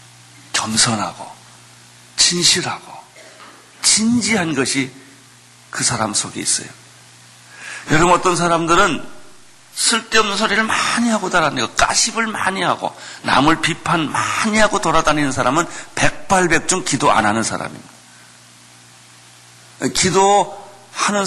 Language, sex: Korean, male